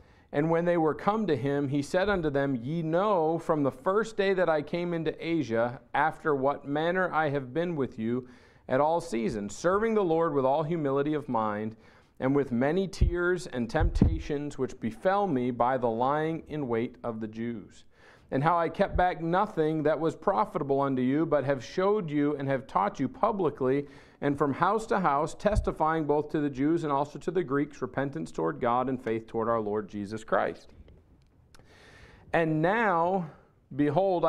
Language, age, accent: English, 40-59, American